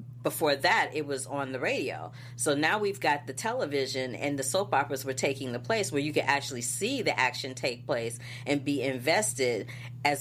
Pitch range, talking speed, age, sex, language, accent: 125-150 Hz, 200 wpm, 40-59, female, English, American